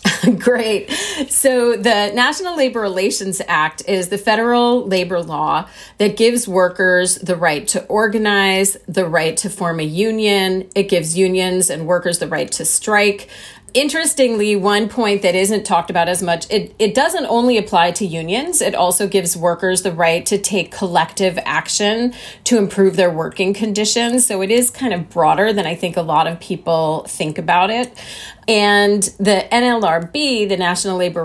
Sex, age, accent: female, 30-49, American